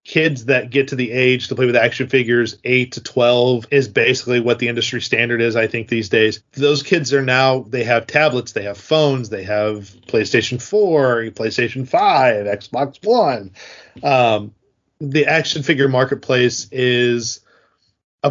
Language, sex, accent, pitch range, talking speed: English, male, American, 115-140 Hz, 165 wpm